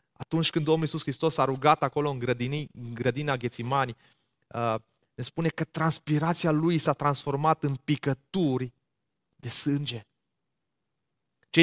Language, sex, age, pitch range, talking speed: Romanian, male, 30-49, 120-150 Hz, 135 wpm